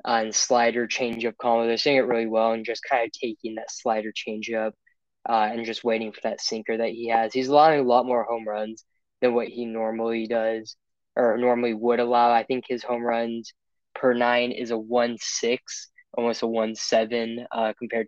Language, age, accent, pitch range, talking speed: English, 10-29, American, 115-125 Hz, 195 wpm